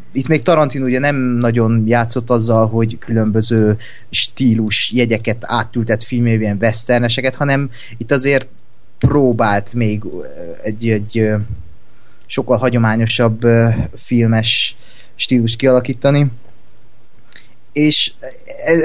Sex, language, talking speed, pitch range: male, Hungarian, 90 wpm, 110-125 Hz